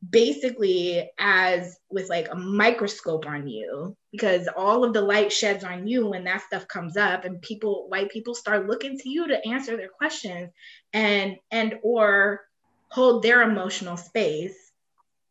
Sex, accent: female, American